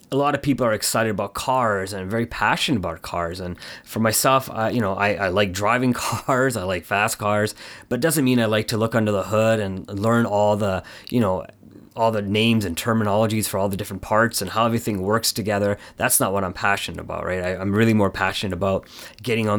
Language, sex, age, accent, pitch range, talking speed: English, male, 30-49, American, 95-115 Hz, 225 wpm